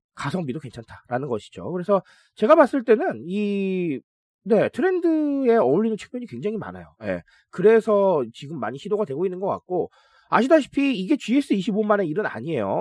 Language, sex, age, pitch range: Korean, male, 30-49, 160-255 Hz